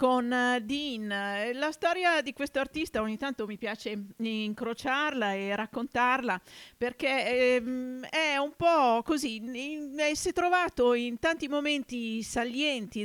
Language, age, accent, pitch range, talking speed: Italian, 50-69, native, 215-270 Hz, 120 wpm